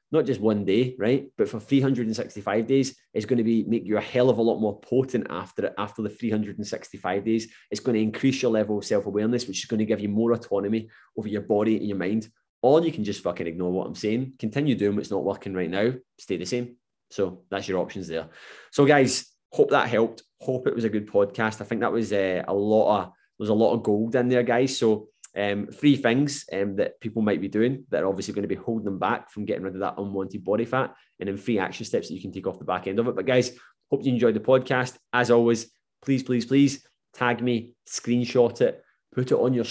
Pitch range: 105-125 Hz